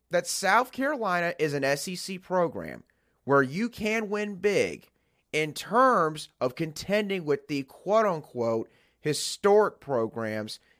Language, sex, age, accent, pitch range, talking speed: English, male, 30-49, American, 125-185 Hz, 115 wpm